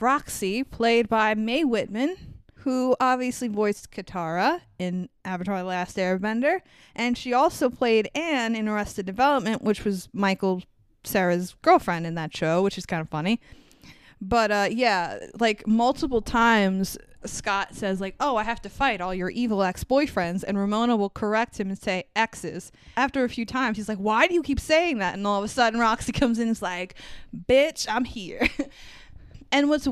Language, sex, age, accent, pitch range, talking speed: English, female, 20-39, American, 195-250 Hz, 180 wpm